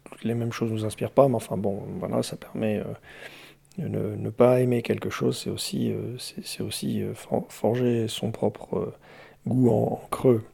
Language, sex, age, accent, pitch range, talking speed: French, male, 40-59, French, 110-135 Hz, 205 wpm